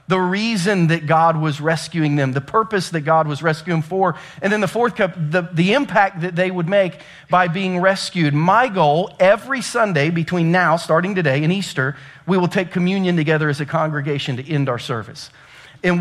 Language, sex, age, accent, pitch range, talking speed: English, male, 40-59, American, 140-180 Hz, 200 wpm